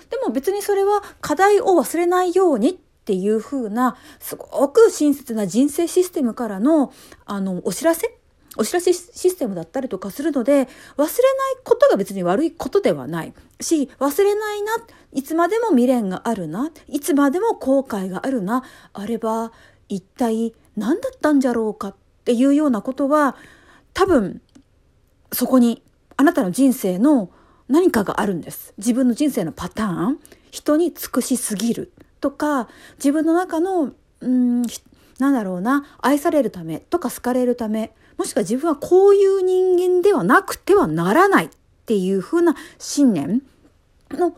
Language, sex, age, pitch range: Japanese, female, 40-59, 240-345 Hz